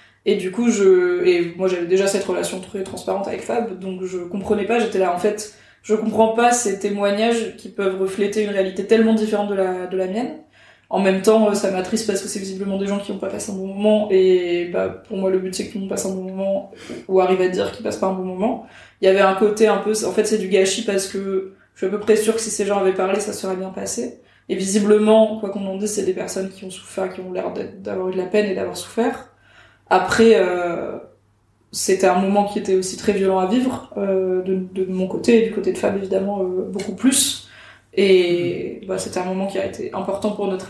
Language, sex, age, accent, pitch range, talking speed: French, female, 20-39, French, 185-210 Hz, 255 wpm